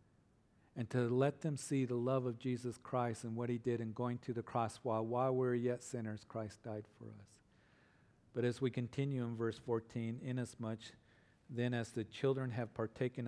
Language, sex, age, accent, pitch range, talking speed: English, male, 50-69, American, 110-130 Hz, 195 wpm